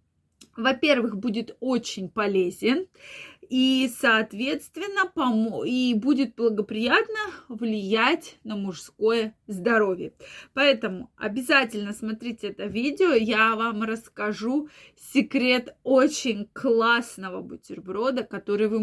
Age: 20-39